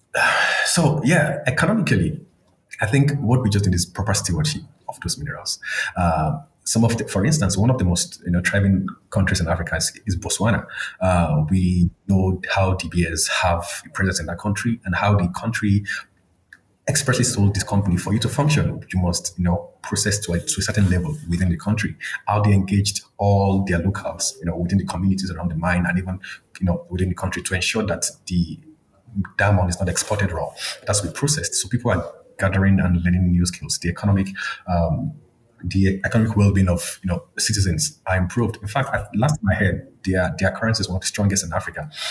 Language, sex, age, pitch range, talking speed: English, male, 30-49, 90-110 Hz, 205 wpm